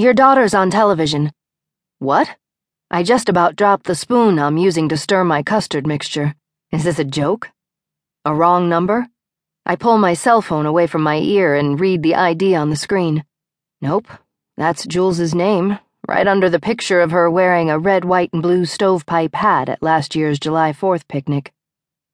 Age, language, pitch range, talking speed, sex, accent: 40-59, English, 155-200 Hz, 175 wpm, female, American